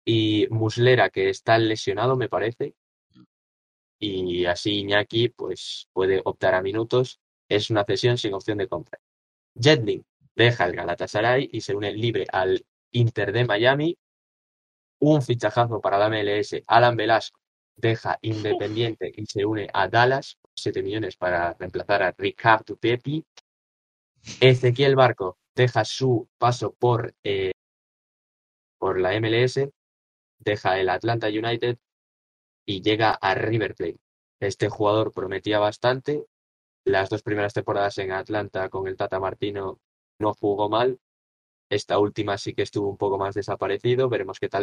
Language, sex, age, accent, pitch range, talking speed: Spanish, male, 20-39, Spanish, 100-125 Hz, 140 wpm